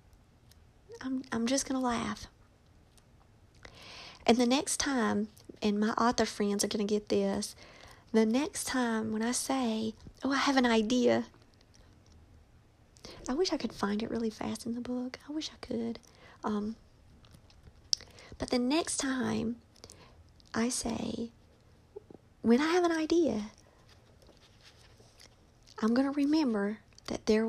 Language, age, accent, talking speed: English, 50-69, American, 140 wpm